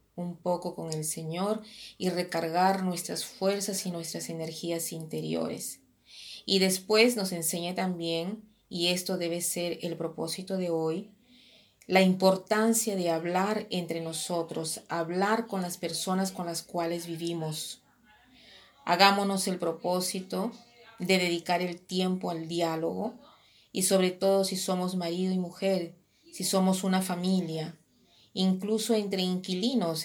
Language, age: Spanish, 30-49